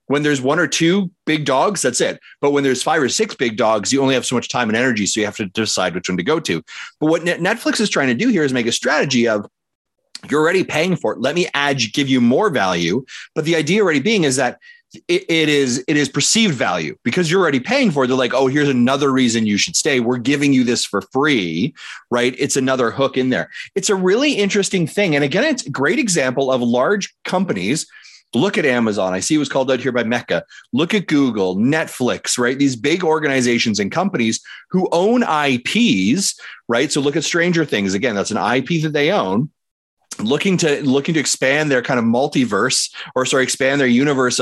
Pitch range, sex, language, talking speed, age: 125-170 Hz, male, English, 225 wpm, 30-49